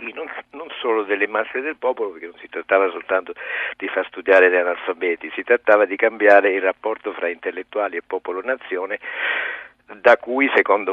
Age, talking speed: 50-69, 160 wpm